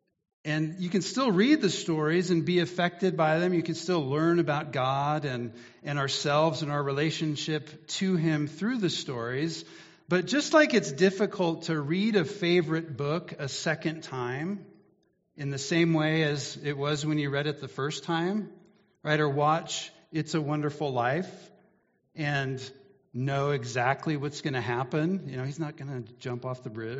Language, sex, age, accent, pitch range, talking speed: English, male, 50-69, American, 140-180 Hz, 180 wpm